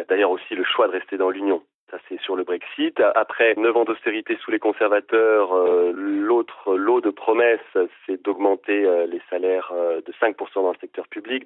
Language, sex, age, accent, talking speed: French, male, 30-49, French, 190 wpm